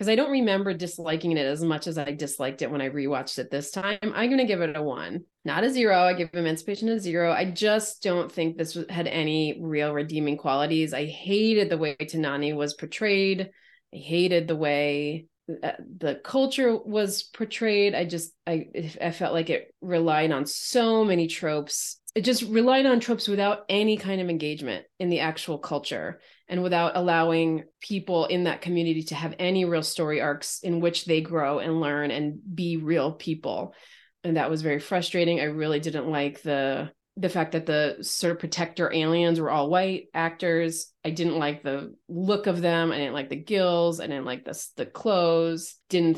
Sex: female